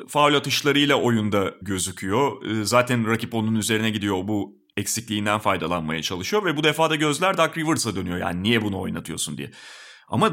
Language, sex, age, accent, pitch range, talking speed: Turkish, male, 30-49, native, 115-185 Hz, 155 wpm